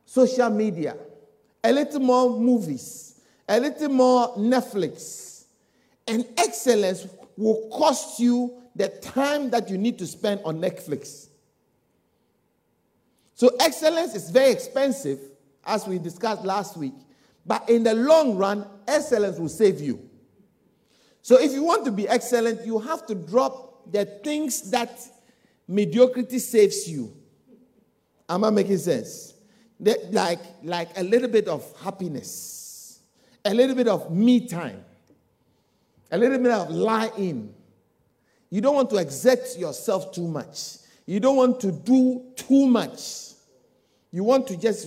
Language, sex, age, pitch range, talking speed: English, male, 50-69, 190-250 Hz, 135 wpm